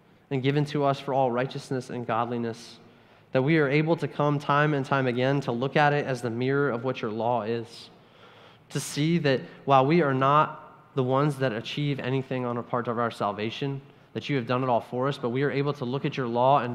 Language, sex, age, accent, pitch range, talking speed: English, male, 20-39, American, 120-145 Hz, 240 wpm